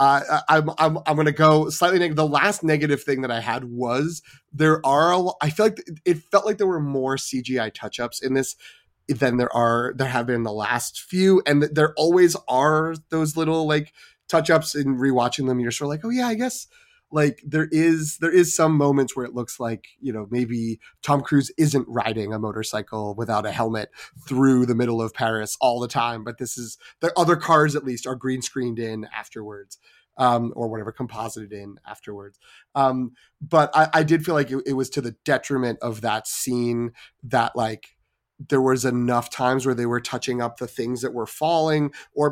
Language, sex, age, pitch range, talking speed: English, male, 30-49, 115-150 Hz, 200 wpm